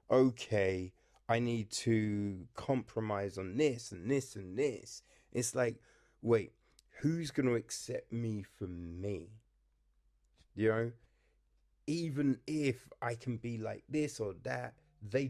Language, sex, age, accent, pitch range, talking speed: English, male, 30-49, British, 100-135 Hz, 130 wpm